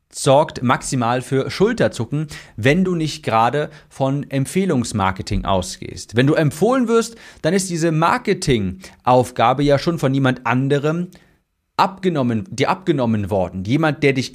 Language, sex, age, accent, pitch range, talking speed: German, male, 40-59, German, 120-160 Hz, 130 wpm